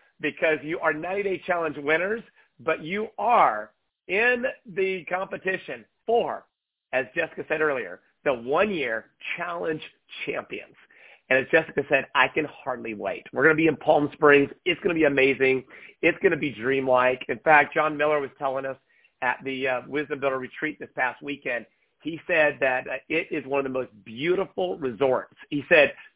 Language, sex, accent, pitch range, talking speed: English, male, American, 145-195 Hz, 170 wpm